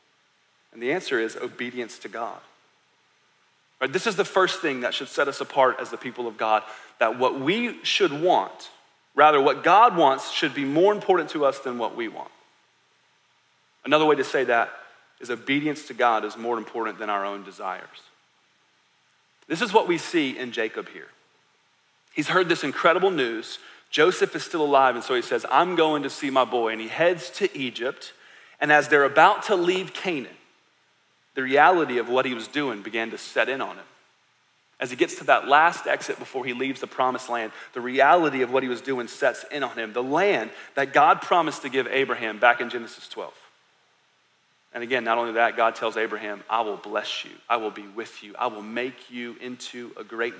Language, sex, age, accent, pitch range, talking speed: English, male, 40-59, American, 120-155 Hz, 200 wpm